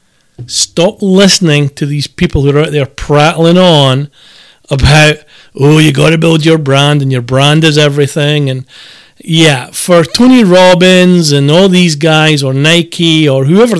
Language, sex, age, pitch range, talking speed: English, male, 40-59, 140-175 Hz, 160 wpm